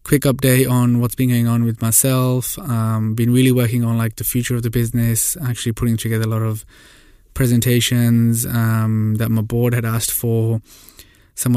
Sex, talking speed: male, 180 wpm